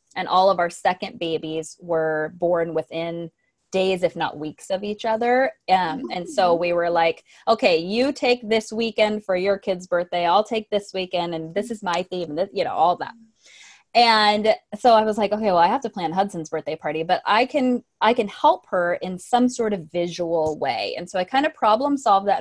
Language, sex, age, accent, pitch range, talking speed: English, female, 20-39, American, 175-245 Hz, 210 wpm